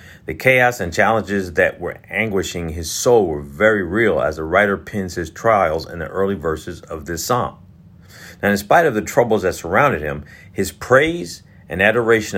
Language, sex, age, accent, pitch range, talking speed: English, male, 50-69, American, 85-110 Hz, 185 wpm